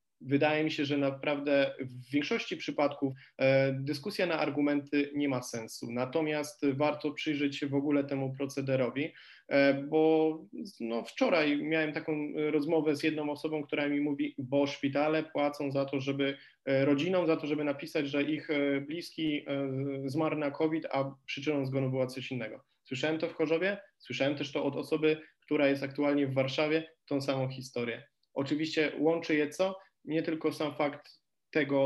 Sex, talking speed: male, 155 wpm